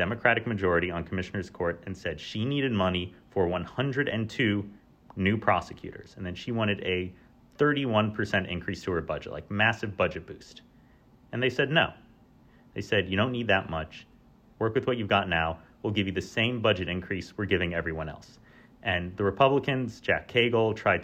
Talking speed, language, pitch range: 175 wpm, English, 90-115 Hz